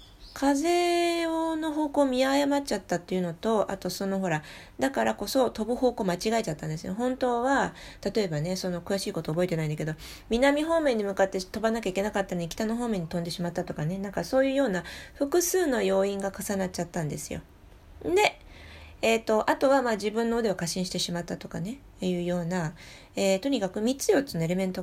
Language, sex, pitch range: Japanese, female, 175-230 Hz